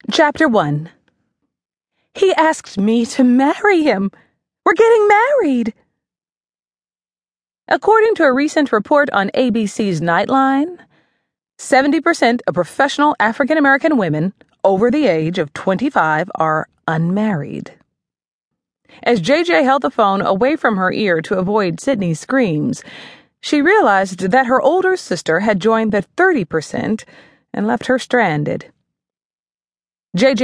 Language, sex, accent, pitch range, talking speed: English, female, American, 180-290 Hz, 115 wpm